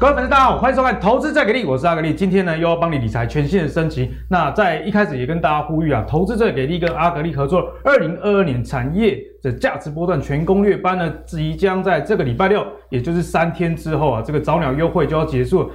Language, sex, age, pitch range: Chinese, male, 20-39, 135-190 Hz